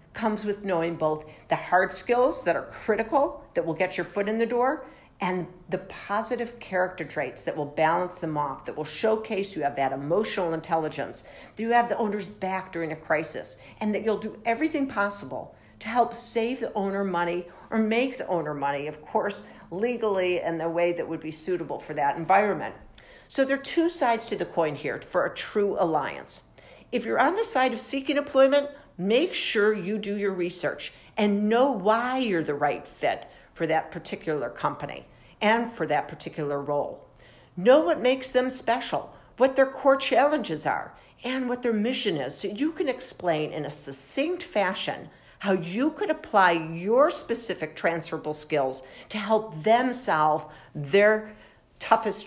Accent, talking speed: American, 180 wpm